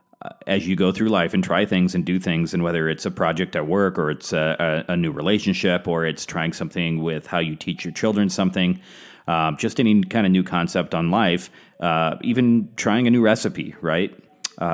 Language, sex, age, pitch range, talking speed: English, male, 30-49, 80-100 Hz, 210 wpm